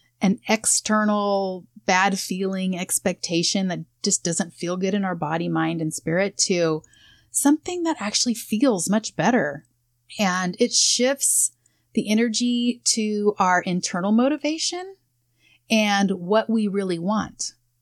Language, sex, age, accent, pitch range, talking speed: English, female, 30-49, American, 170-225 Hz, 125 wpm